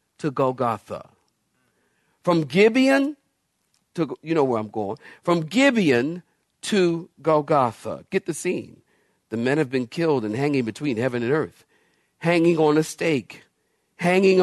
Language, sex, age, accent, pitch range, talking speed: English, male, 50-69, American, 140-185 Hz, 135 wpm